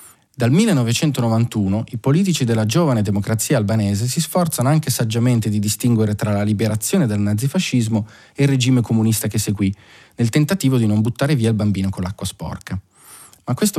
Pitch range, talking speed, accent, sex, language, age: 105-140 Hz, 165 wpm, native, male, Italian, 30-49